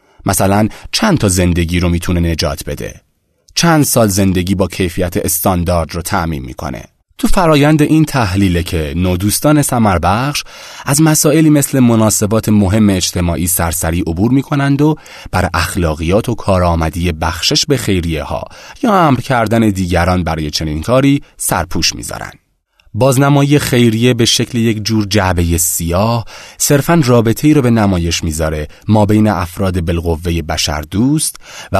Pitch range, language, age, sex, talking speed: 85-125 Hz, Persian, 30-49, male, 140 wpm